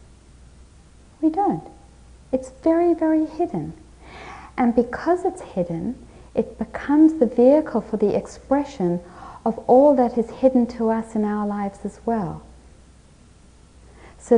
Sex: female